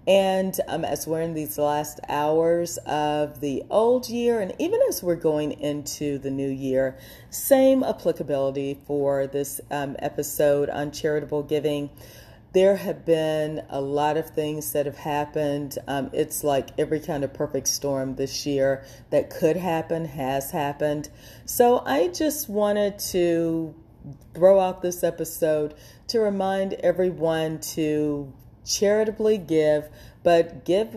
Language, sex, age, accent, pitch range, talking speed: English, female, 40-59, American, 145-175 Hz, 140 wpm